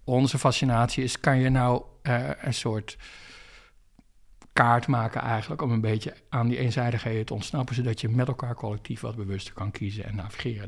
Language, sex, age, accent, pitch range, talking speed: Dutch, male, 50-69, Dutch, 115-140 Hz, 175 wpm